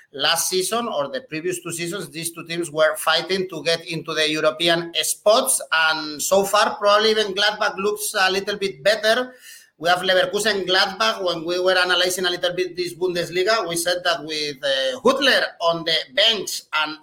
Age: 30-49